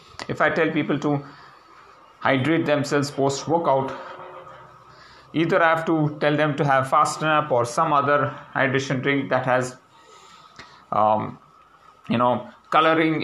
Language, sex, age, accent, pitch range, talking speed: English, male, 30-49, Indian, 130-160 Hz, 130 wpm